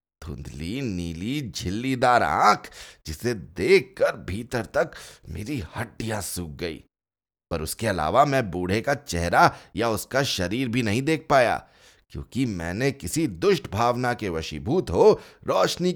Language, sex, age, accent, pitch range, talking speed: Hindi, male, 30-49, native, 85-120 Hz, 130 wpm